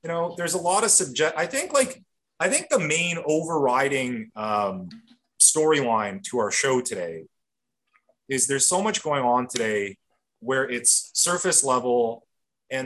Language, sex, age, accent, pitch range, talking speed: English, male, 30-49, American, 125-190 Hz, 155 wpm